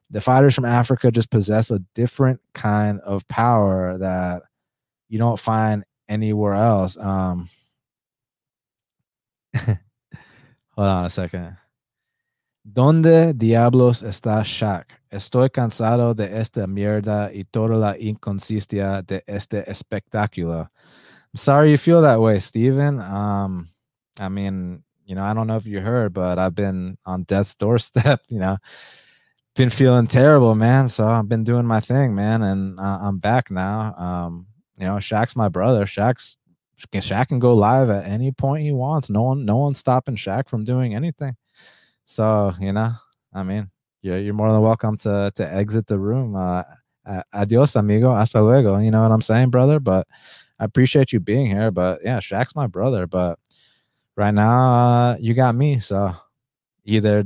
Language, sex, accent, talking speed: English, male, American, 160 wpm